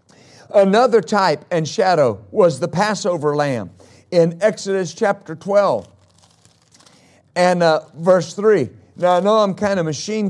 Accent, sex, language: American, male, English